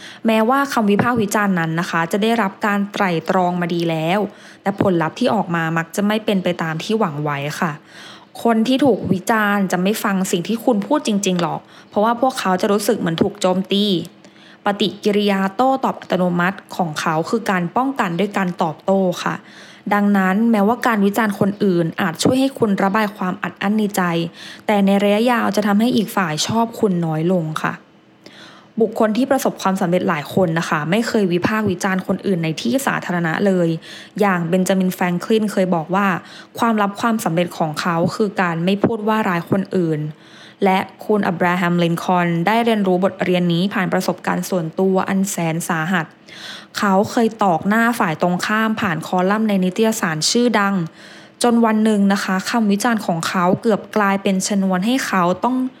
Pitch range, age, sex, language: 180-220 Hz, 20-39, female, English